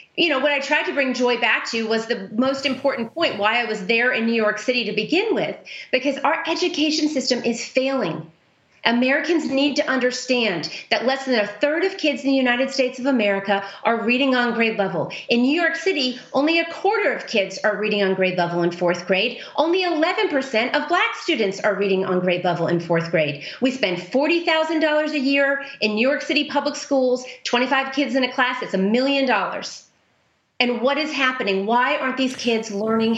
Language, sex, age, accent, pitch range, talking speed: English, female, 30-49, American, 200-275 Hz, 205 wpm